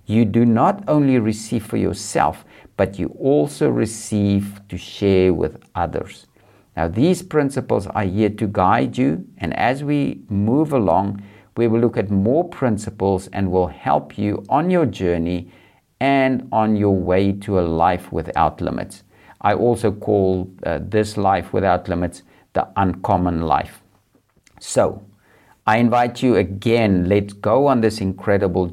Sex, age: male, 50-69